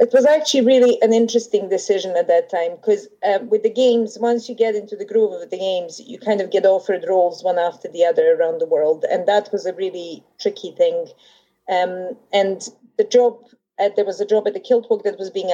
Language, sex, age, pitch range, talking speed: English, female, 30-49, 185-265 Hz, 225 wpm